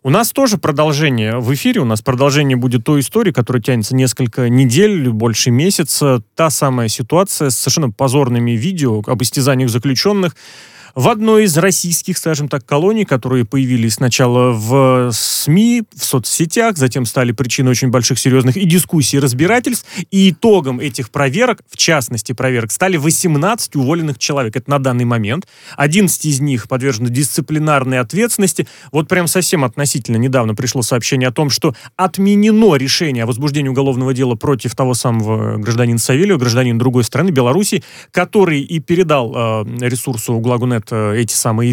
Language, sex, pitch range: Russian, male, 125-185 Hz